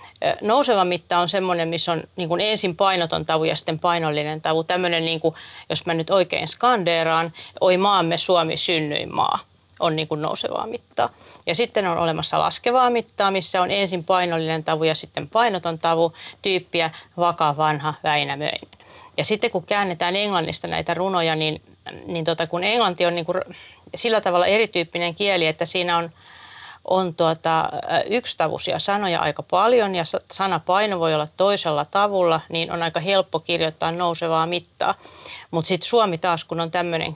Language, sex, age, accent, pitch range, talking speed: Finnish, female, 30-49, native, 165-185 Hz, 155 wpm